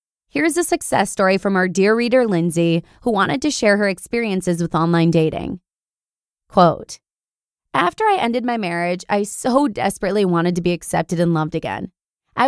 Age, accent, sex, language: 20-39, American, female, English